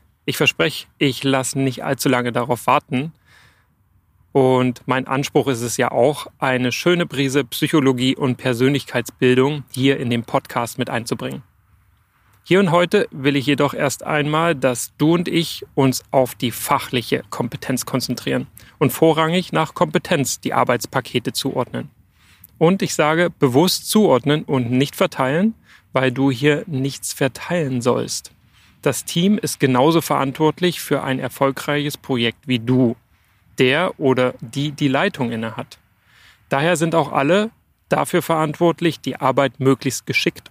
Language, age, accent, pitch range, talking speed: German, 30-49, German, 125-155 Hz, 140 wpm